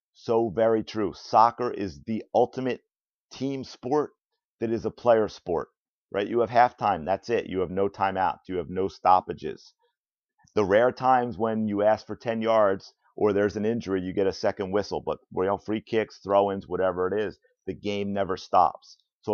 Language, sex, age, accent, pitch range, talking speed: English, male, 40-59, American, 100-120 Hz, 180 wpm